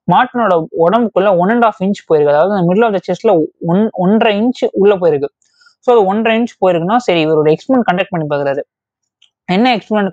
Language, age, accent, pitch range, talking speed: Tamil, 20-39, native, 175-235 Hz, 180 wpm